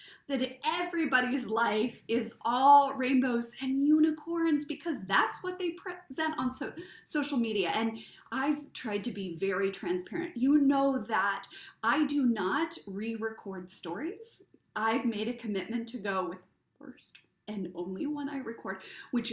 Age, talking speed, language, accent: 30-49, 145 wpm, English, American